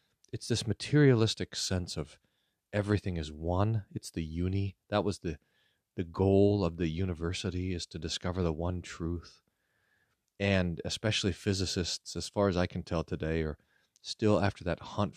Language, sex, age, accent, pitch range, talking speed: English, male, 40-59, American, 90-110 Hz, 160 wpm